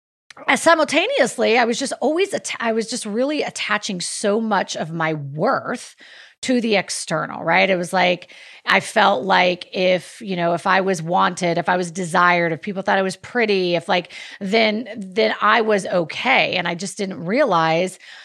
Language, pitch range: English, 175-220 Hz